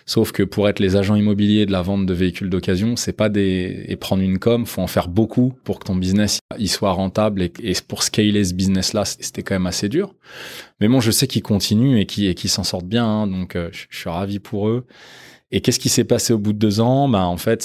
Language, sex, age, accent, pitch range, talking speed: French, male, 20-39, French, 90-105 Hz, 260 wpm